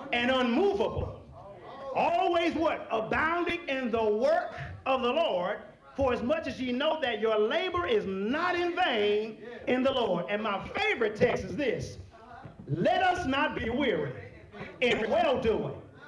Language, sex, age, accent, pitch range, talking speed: English, male, 40-59, American, 230-315 Hz, 150 wpm